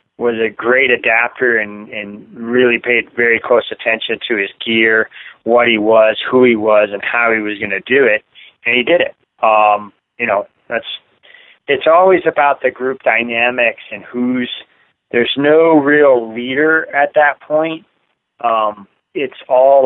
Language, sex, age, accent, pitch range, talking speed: English, male, 40-59, American, 110-135 Hz, 165 wpm